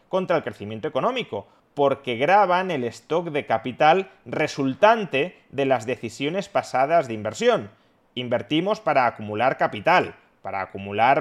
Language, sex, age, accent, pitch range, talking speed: Spanish, male, 30-49, Spanish, 110-145 Hz, 125 wpm